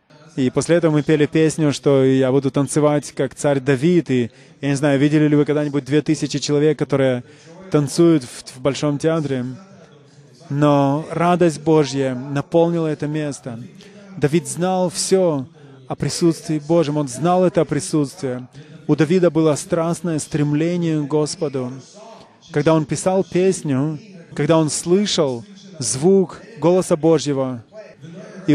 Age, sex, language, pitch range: 20-39, male, English, 145-170 Hz